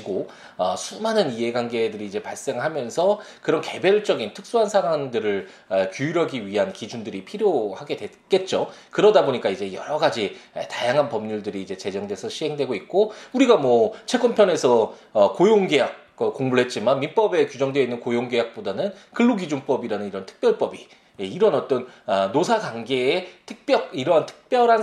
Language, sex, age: Korean, male, 20-39